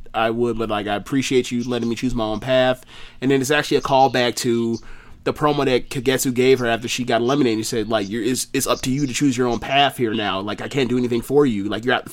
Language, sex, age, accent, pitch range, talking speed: English, male, 30-49, American, 115-140 Hz, 285 wpm